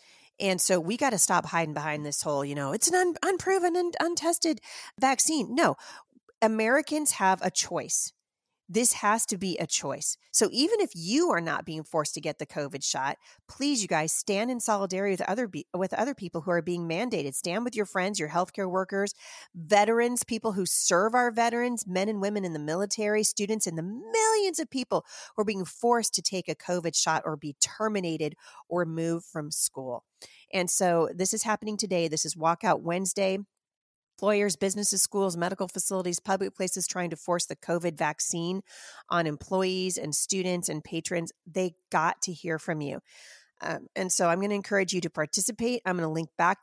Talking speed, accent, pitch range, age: 190 wpm, American, 165-215 Hz, 40-59